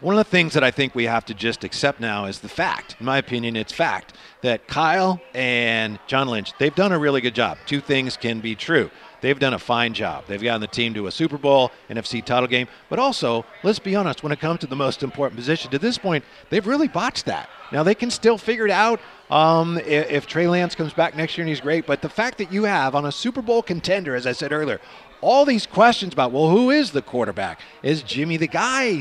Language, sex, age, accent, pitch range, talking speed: English, male, 50-69, American, 135-200 Hz, 250 wpm